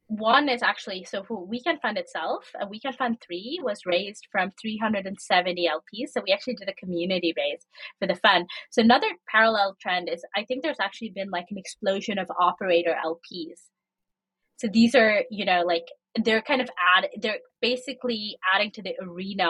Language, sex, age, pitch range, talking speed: English, female, 20-39, 175-225 Hz, 180 wpm